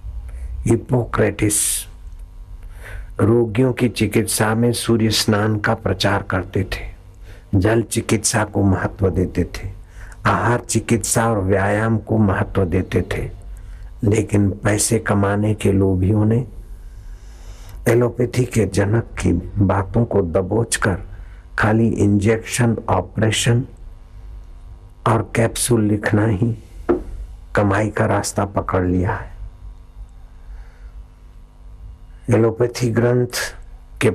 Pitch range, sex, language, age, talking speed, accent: 95-110 Hz, male, Hindi, 60-79, 95 wpm, native